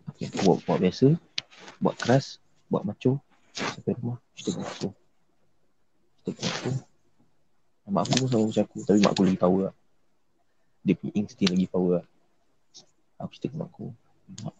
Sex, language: male, Malay